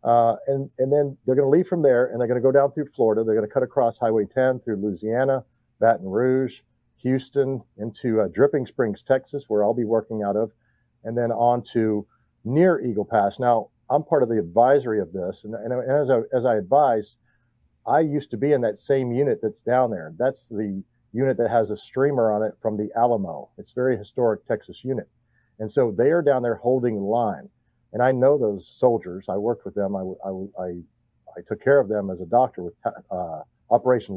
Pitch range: 110-135 Hz